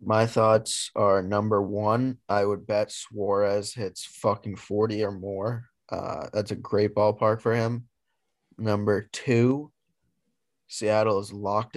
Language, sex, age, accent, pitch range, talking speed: English, male, 20-39, American, 100-120 Hz, 135 wpm